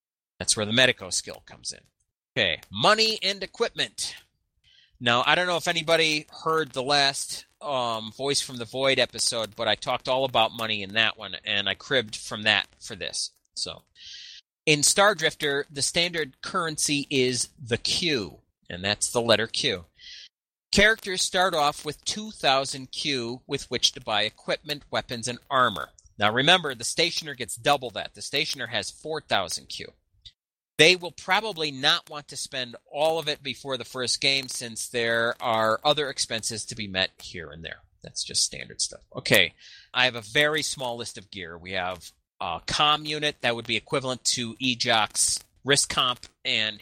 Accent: American